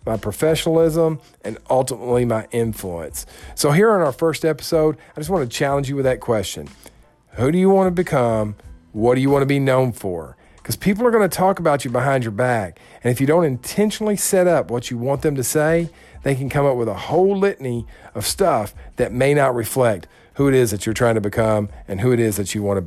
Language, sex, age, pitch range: English, male, 40-59, 110-145 Hz